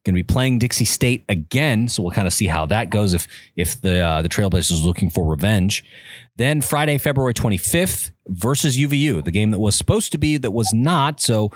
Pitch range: 90-120 Hz